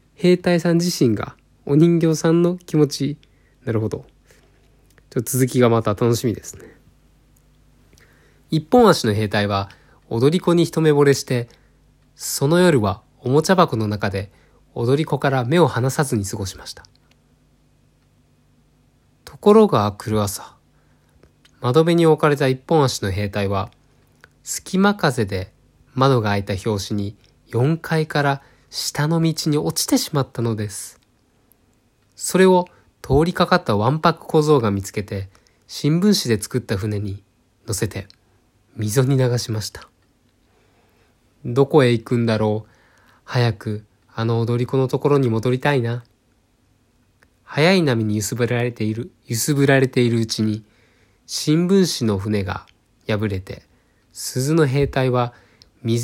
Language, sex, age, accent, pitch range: Japanese, male, 20-39, native, 110-150 Hz